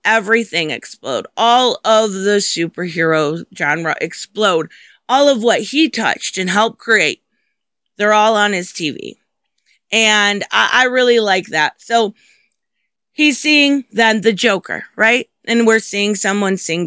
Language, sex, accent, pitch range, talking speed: English, female, American, 185-235 Hz, 140 wpm